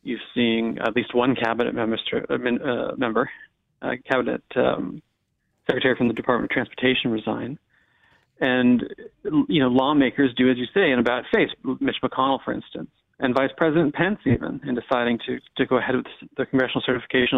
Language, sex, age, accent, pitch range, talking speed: English, male, 40-59, American, 120-140 Hz, 170 wpm